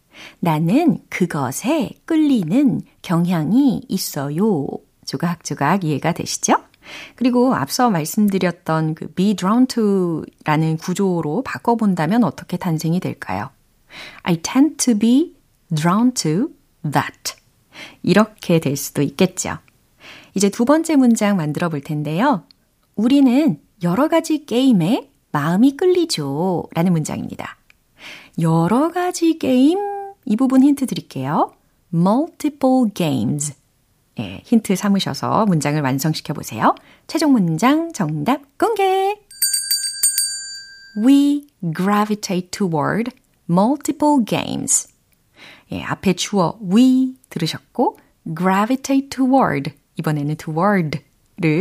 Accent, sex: native, female